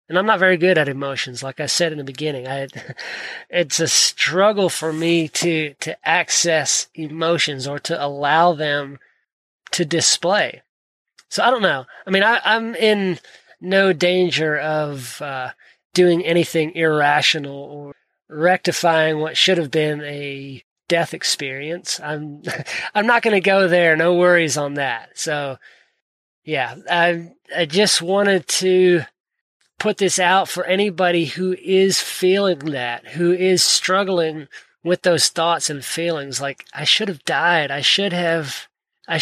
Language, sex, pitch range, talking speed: English, male, 150-190 Hz, 150 wpm